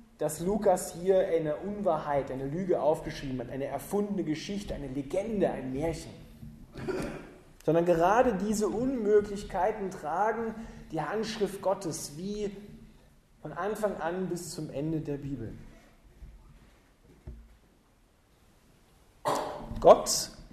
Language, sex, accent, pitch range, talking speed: German, male, German, 155-205 Hz, 100 wpm